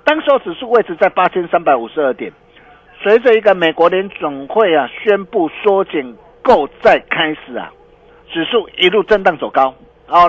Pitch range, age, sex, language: 155-235 Hz, 50-69, male, Chinese